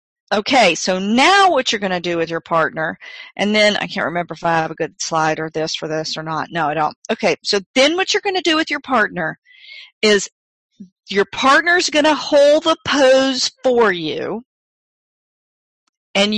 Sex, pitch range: female, 190-275 Hz